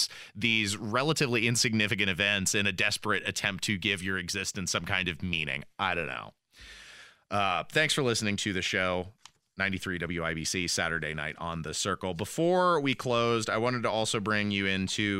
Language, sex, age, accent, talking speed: English, male, 30-49, American, 170 wpm